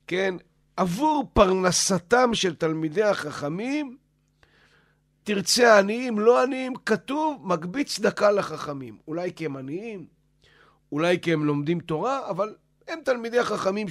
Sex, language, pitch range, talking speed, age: male, Hebrew, 140-190 Hz, 115 wpm, 50-69